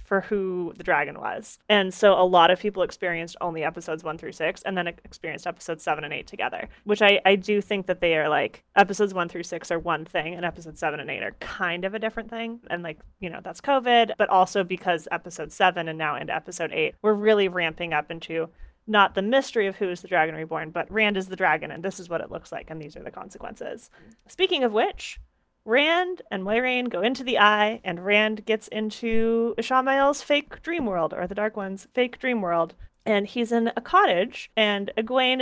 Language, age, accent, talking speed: English, 30-49, American, 220 wpm